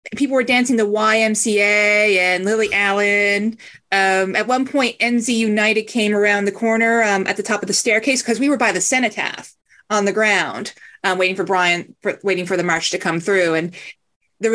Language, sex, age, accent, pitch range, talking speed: English, female, 30-49, American, 195-240 Hz, 200 wpm